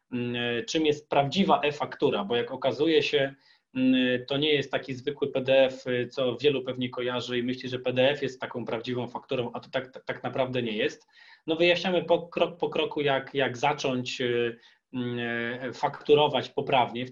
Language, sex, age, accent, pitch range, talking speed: Polish, male, 20-39, native, 125-140 Hz, 160 wpm